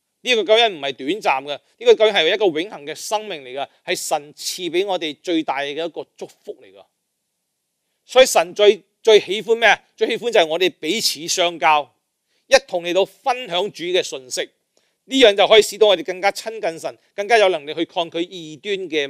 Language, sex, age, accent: Chinese, male, 40-59, native